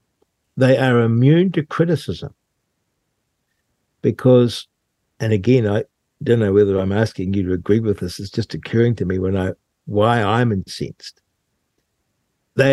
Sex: male